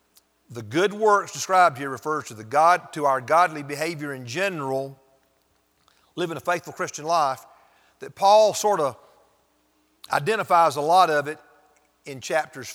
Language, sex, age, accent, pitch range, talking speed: English, male, 50-69, American, 125-175 Hz, 145 wpm